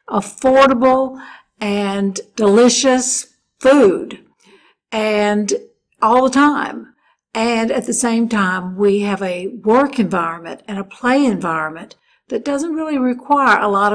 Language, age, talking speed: English, 60-79, 120 wpm